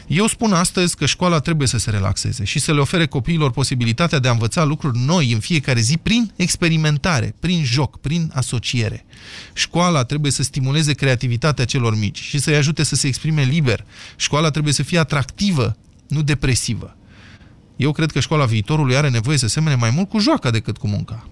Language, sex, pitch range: Romanian, male, 115-155 Hz